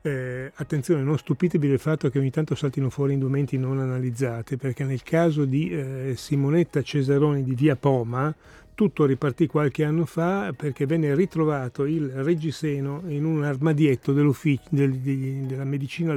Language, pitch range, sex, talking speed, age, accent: Italian, 135-155 Hz, male, 155 wpm, 40-59, native